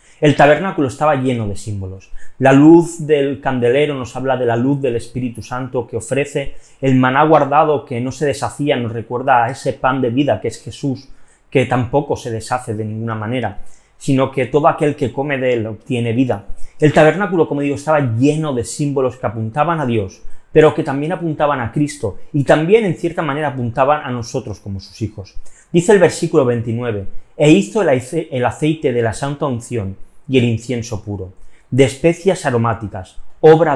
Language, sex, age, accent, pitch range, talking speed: Spanish, male, 30-49, Spanish, 115-150 Hz, 185 wpm